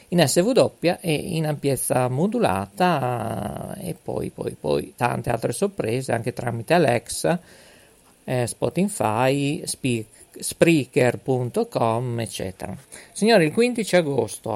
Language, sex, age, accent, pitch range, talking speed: Italian, male, 50-69, native, 125-175 Hz, 105 wpm